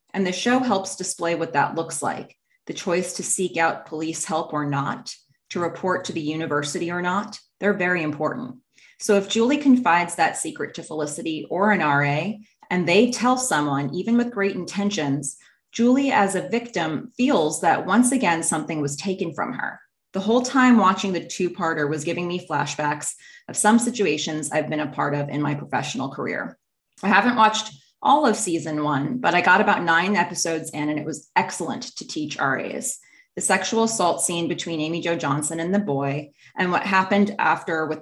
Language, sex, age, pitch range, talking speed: English, female, 20-39, 150-200 Hz, 190 wpm